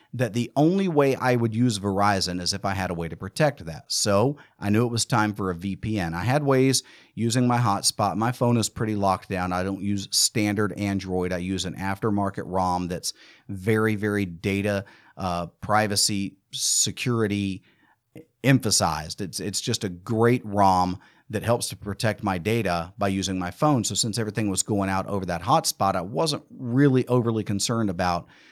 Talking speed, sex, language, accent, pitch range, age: 185 wpm, male, English, American, 95-130 Hz, 40-59